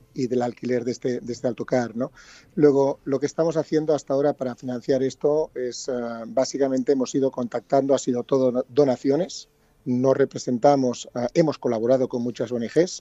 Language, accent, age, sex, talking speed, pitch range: Spanish, Spanish, 40-59, male, 165 wpm, 125-140 Hz